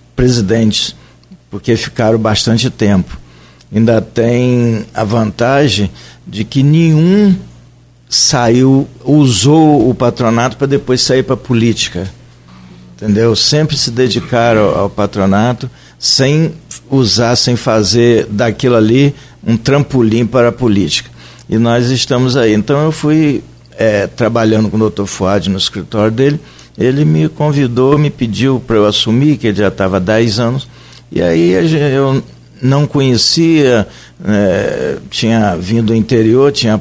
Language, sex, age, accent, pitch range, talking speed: Portuguese, male, 60-79, Brazilian, 100-130 Hz, 130 wpm